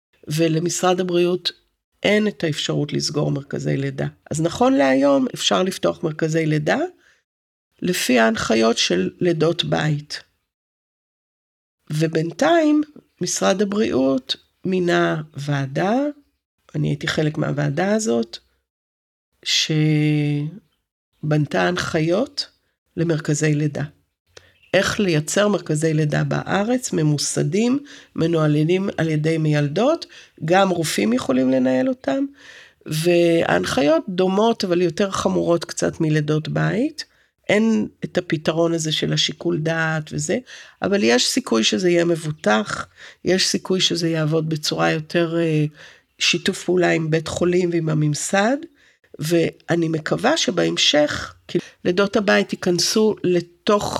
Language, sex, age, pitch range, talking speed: Hebrew, female, 50-69, 150-195 Hz, 100 wpm